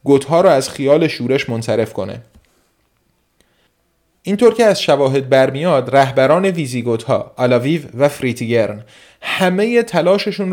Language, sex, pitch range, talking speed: Persian, male, 135-195 Hz, 110 wpm